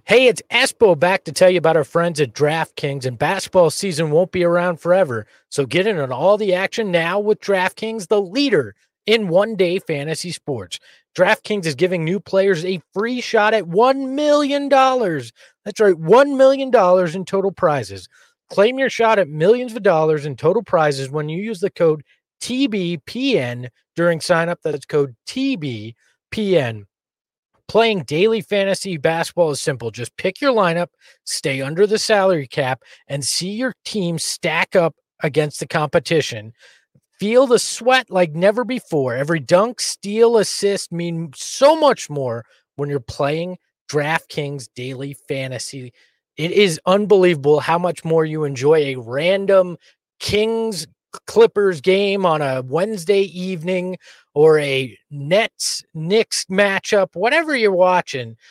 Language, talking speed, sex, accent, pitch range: English, 145 wpm, male, American, 145-205 Hz